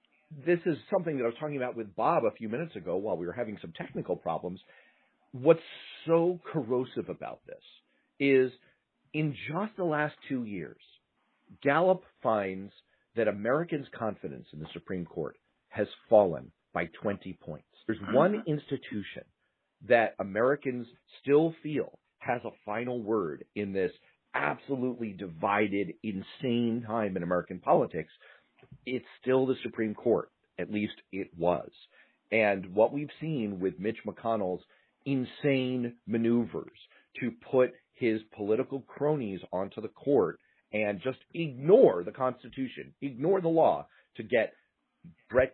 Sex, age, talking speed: male, 50-69, 135 wpm